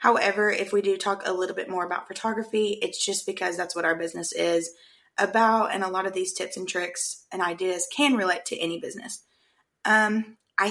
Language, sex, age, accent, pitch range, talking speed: English, female, 20-39, American, 180-230 Hz, 205 wpm